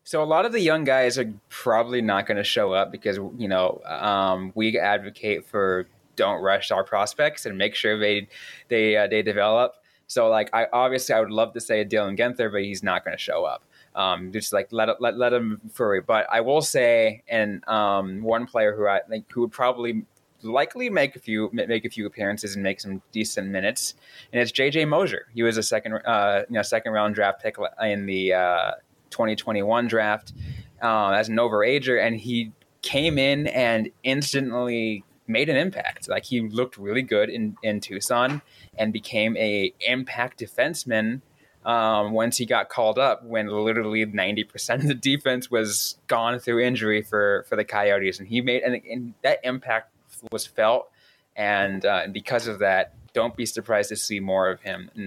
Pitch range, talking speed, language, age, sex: 105-125 Hz, 190 wpm, English, 20-39, male